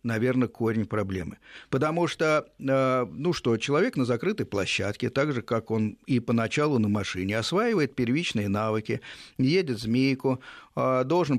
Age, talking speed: 50-69, 130 wpm